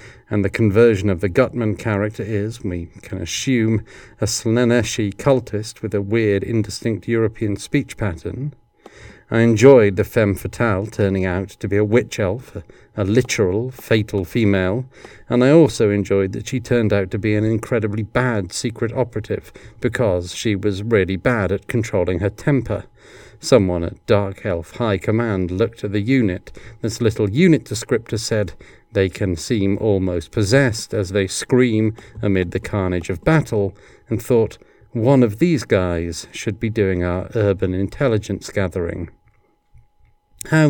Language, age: English, 40-59